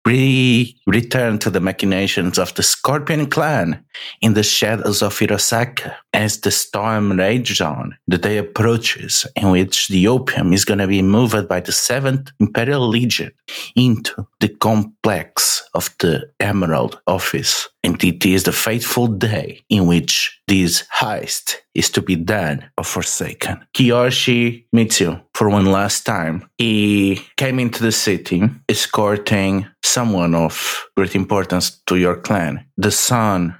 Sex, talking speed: male, 145 wpm